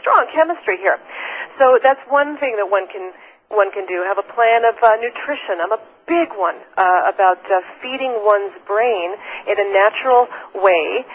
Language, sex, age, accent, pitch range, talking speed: English, female, 40-59, American, 215-295 Hz, 180 wpm